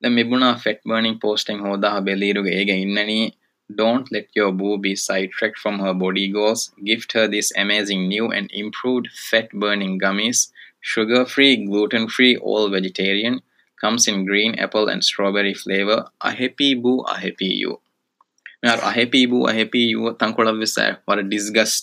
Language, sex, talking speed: Urdu, male, 160 wpm